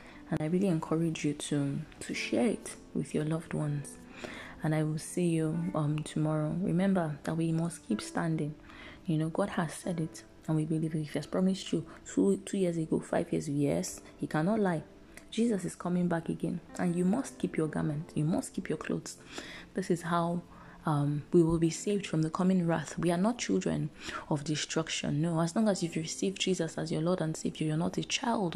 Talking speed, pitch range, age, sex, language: 210 wpm, 155-185 Hz, 20-39, female, English